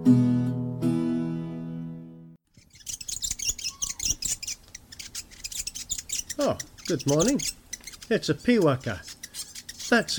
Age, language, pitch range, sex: 50-69, English, 115-170 Hz, male